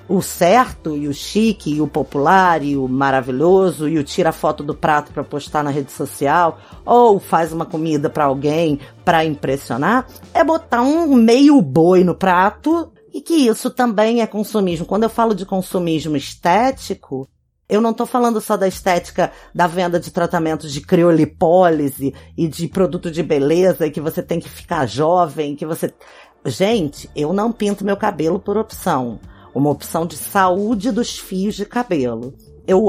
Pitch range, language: 150-220 Hz, Portuguese